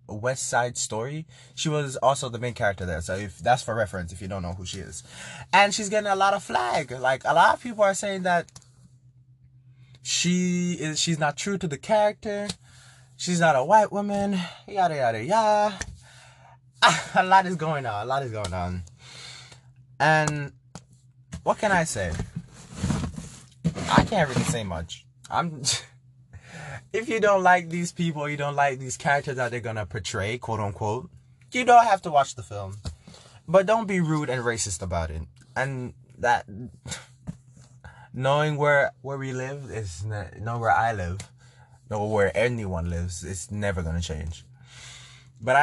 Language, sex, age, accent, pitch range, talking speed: English, male, 20-39, American, 115-150 Hz, 170 wpm